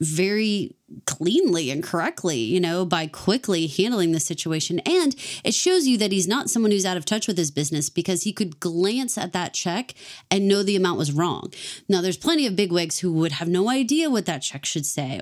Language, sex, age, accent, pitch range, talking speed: English, female, 30-49, American, 165-220 Hz, 215 wpm